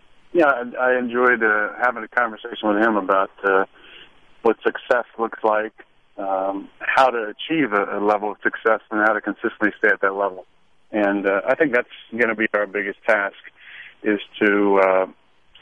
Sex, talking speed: male, 175 wpm